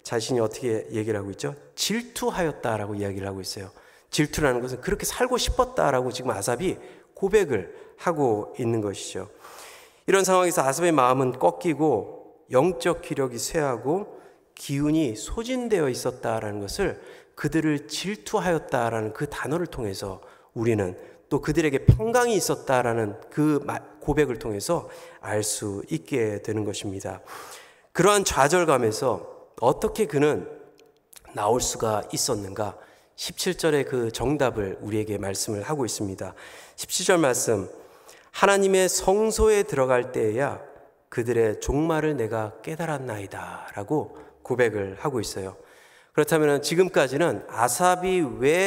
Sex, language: male, Korean